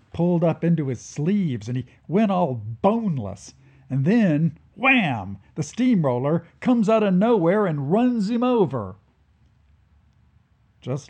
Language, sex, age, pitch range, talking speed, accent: English, male, 50-69, 105-160 Hz, 130 wpm, American